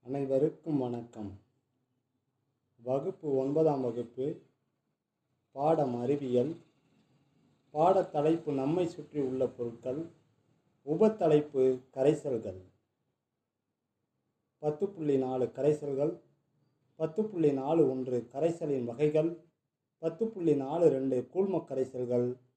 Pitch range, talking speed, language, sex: 130-165 Hz, 80 wpm, Tamil, male